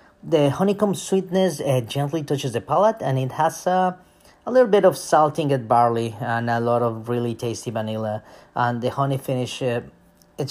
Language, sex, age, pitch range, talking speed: English, male, 30-49, 110-160 Hz, 185 wpm